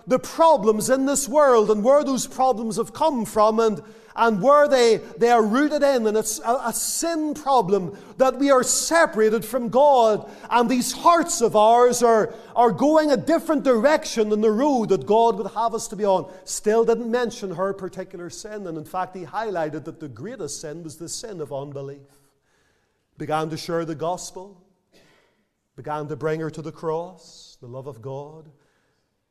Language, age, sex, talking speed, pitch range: English, 40-59, male, 185 wpm, 185-255 Hz